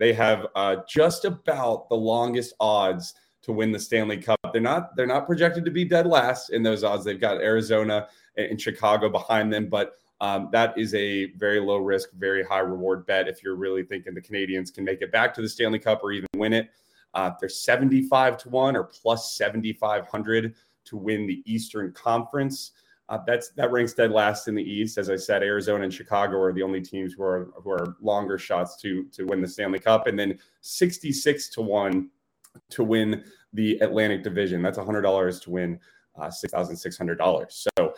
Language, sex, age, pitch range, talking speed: English, male, 30-49, 100-120 Hz, 205 wpm